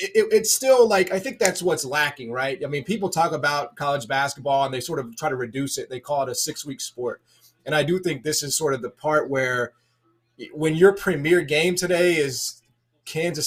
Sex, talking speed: male, 215 wpm